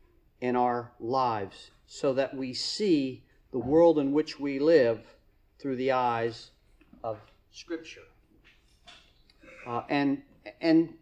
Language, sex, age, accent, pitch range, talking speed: English, male, 40-59, American, 125-155 Hz, 115 wpm